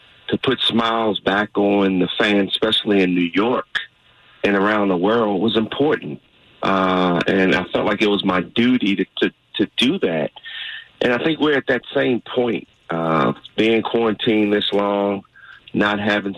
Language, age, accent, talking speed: English, 40-59, American, 170 wpm